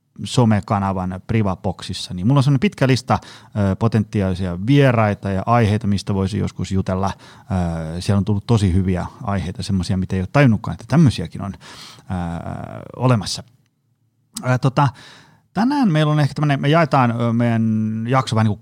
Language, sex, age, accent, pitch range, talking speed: Finnish, male, 30-49, native, 95-125 Hz, 125 wpm